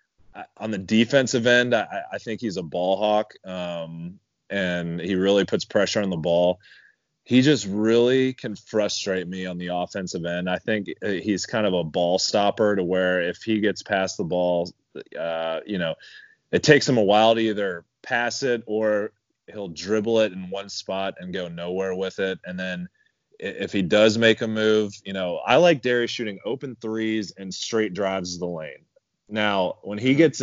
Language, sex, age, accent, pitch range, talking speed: English, male, 30-49, American, 90-115 Hz, 185 wpm